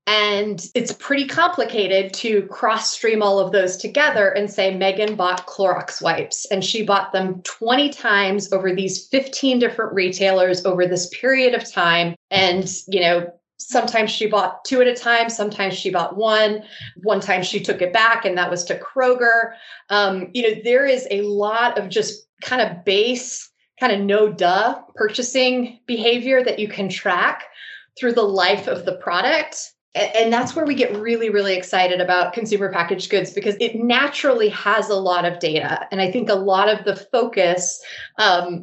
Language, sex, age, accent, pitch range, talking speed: English, female, 30-49, American, 190-230 Hz, 180 wpm